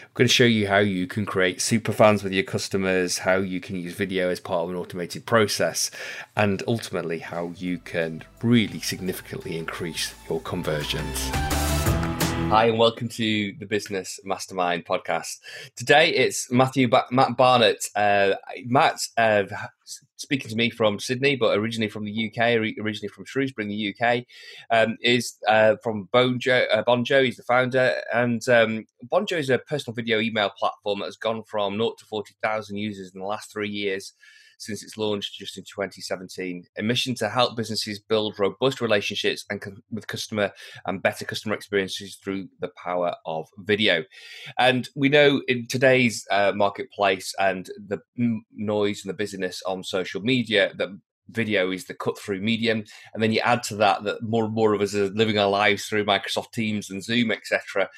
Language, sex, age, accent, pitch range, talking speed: English, male, 20-39, British, 95-120 Hz, 180 wpm